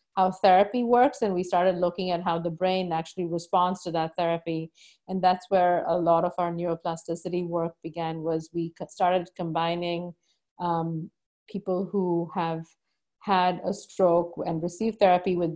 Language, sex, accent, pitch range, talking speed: English, female, Indian, 170-190 Hz, 160 wpm